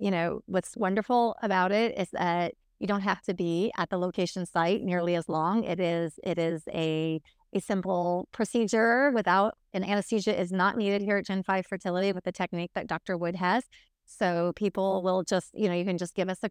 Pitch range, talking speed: 165-195 Hz, 210 wpm